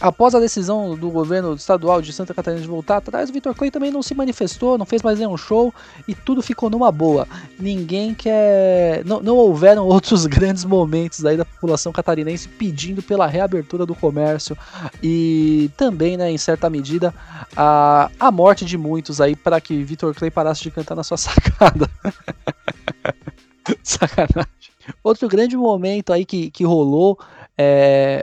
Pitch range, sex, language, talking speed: 160-220 Hz, male, Portuguese, 165 wpm